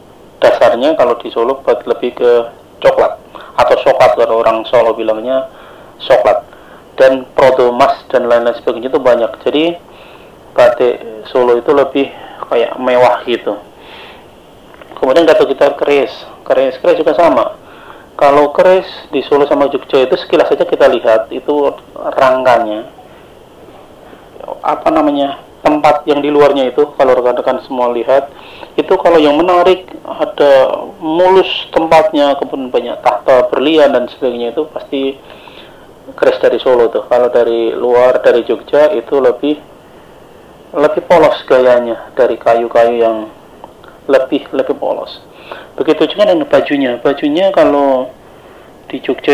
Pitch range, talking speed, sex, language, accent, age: 125-160 Hz, 125 wpm, male, Indonesian, native, 30-49